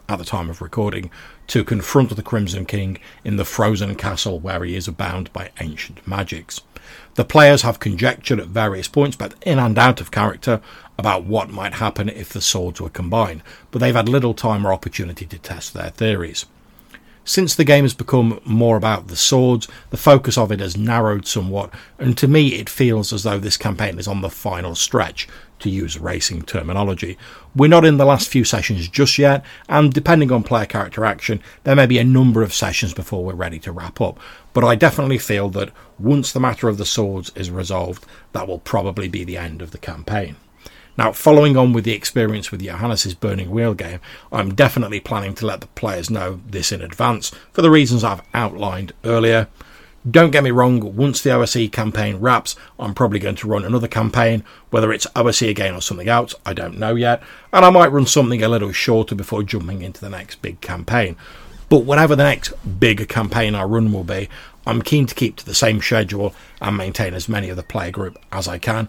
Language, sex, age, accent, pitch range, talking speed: English, male, 50-69, British, 95-120 Hz, 205 wpm